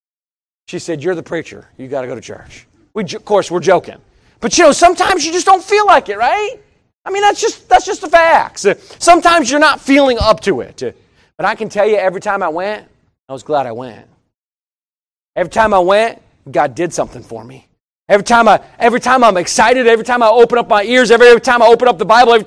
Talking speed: 235 wpm